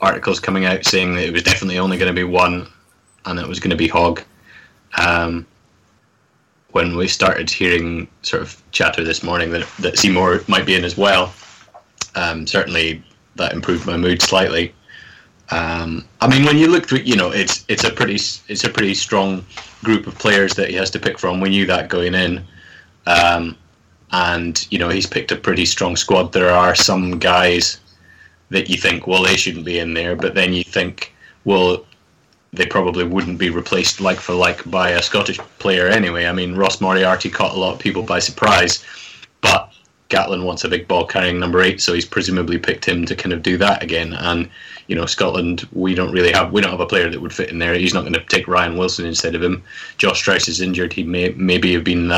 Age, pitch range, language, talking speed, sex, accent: 20-39, 85-95 Hz, English, 215 wpm, male, British